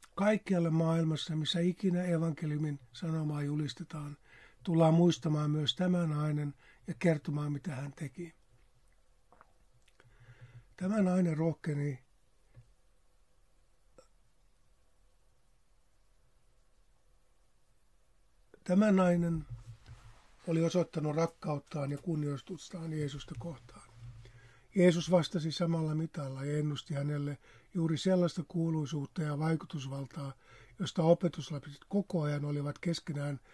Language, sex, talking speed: Finnish, male, 80 wpm